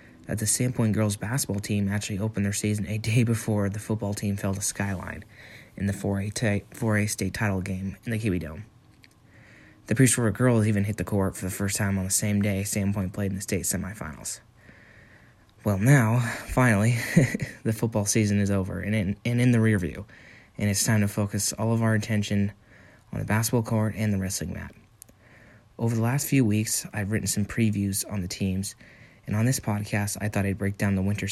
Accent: American